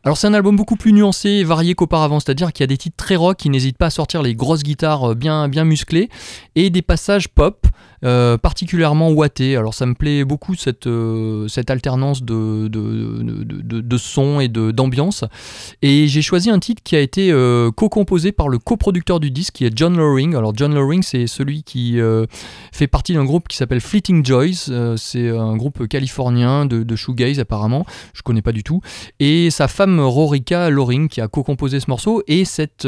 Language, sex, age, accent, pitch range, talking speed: French, male, 30-49, French, 120-160 Hz, 210 wpm